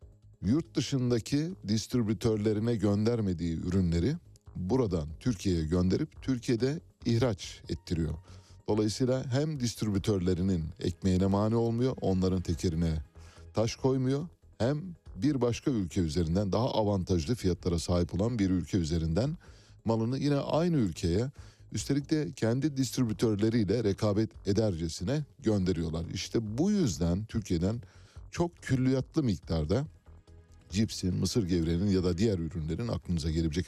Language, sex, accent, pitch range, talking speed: Turkish, male, native, 85-115 Hz, 110 wpm